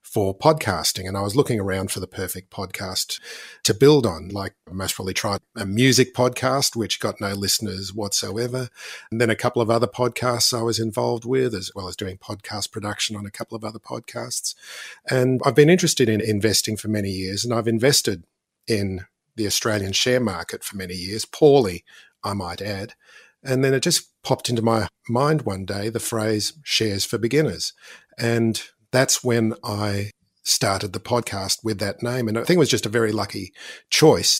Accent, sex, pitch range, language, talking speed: Australian, male, 100-120 Hz, English, 190 wpm